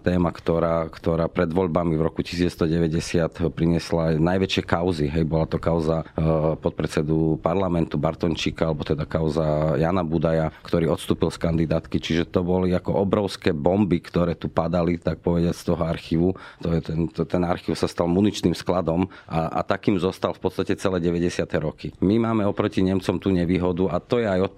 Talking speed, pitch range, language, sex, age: 170 wpm, 85-100 Hz, Slovak, male, 40-59